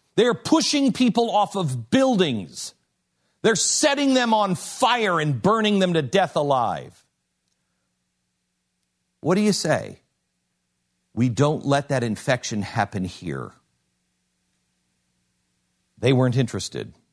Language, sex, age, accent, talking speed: English, male, 50-69, American, 110 wpm